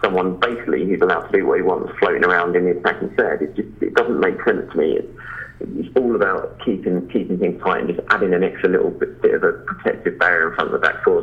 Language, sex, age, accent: English, male, 30-49, British